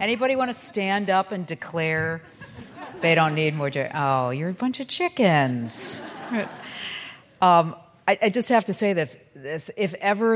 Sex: female